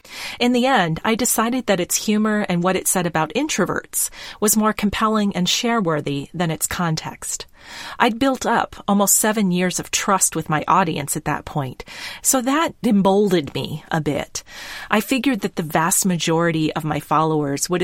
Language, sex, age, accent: English, female, 30-49, American